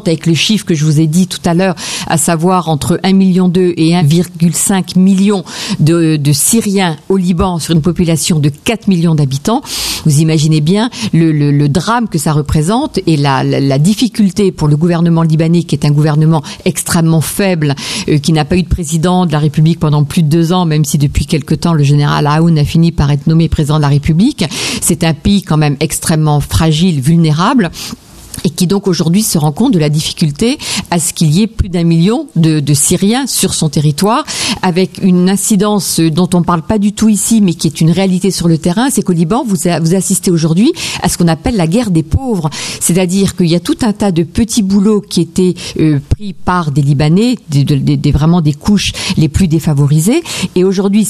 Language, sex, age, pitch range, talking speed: French, female, 50-69, 160-200 Hz, 215 wpm